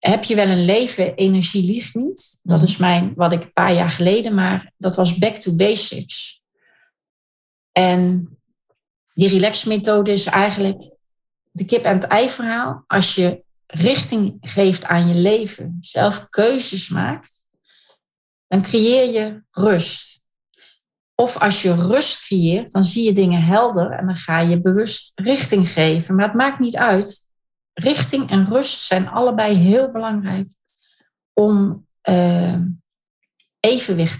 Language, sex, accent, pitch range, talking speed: Dutch, female, Dutch, 180-220 Hz, 140 wpm